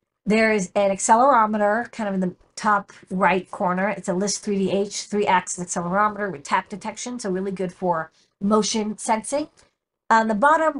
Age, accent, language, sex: 50-69, American, English, female